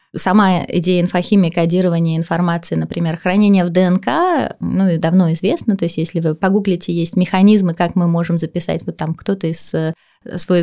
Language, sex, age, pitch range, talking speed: Russian, female, 20-39, 175-210 Hz, 160 wpm